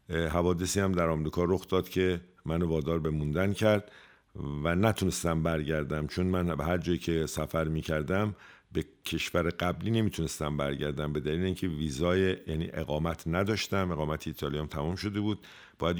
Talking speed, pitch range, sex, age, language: 160 wpm, 75-95 Hz, male, 50-69, Persian